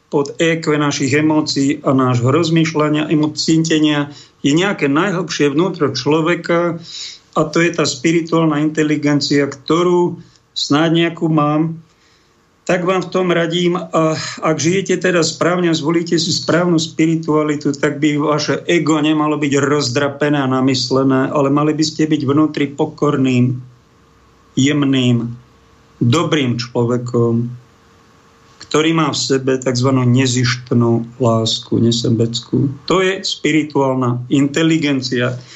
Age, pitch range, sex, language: 50-69, 130-160 Hz, male, Slovak